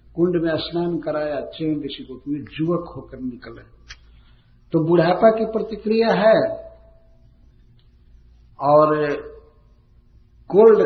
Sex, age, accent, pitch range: male, 50-69, native, 115-175 Hz